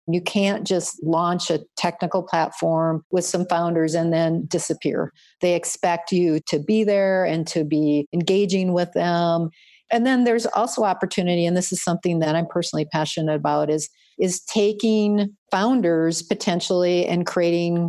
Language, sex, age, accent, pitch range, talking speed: English, female, 50-69, American, 155-185 Hz, 155 wpm